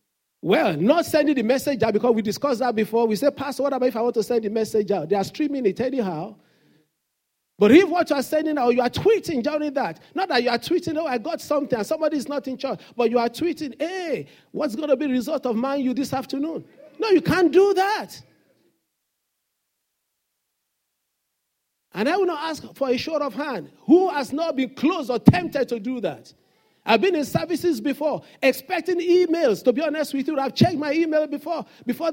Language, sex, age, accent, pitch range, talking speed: English, male, 40-59, Nigerian, 235-325 Hz, 210 wpm